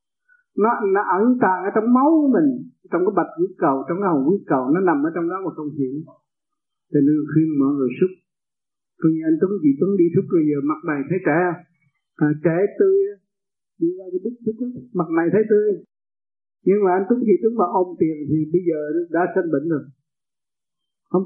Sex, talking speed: male, 205 wpm